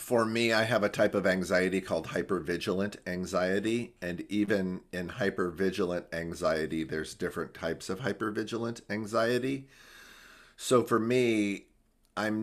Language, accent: English, American